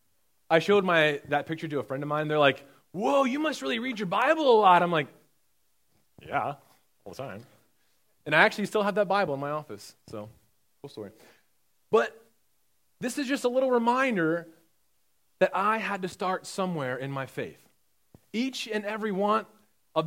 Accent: American